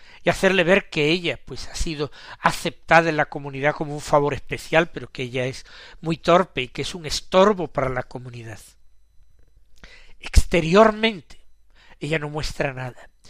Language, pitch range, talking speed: Spanish, 140-195 Hz, 160 wpm